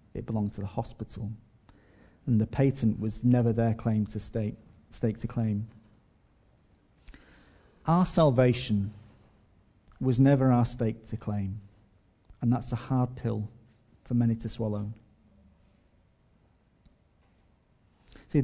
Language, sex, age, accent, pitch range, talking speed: English, male, 40-59, British, 110-130 Hz, 115 wpm